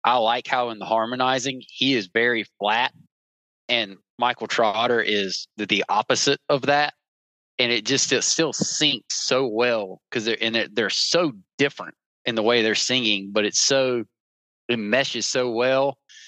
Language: English